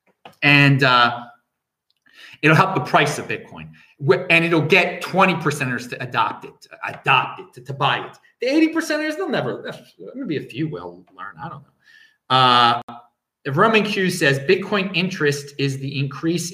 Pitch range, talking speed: 120-195 Hz, 170 wpm